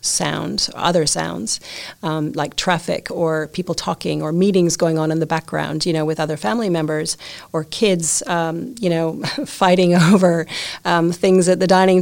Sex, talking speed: female, 170 wpm